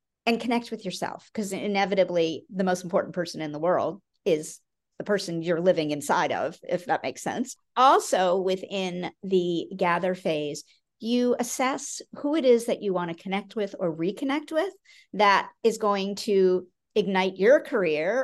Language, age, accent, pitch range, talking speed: English, 50-69, American, 175-225 Hz, 165 wpm